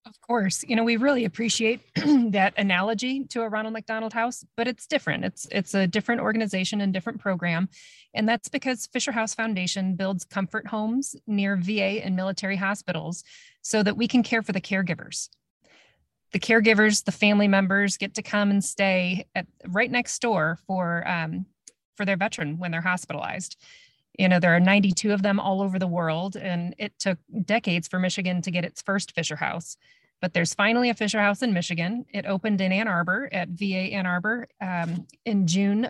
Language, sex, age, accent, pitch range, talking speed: English, female, 30-49, American, 180-220 Hz, 185 wpm